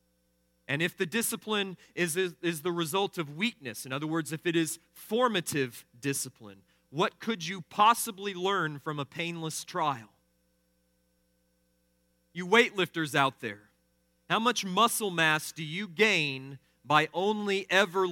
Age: 40-59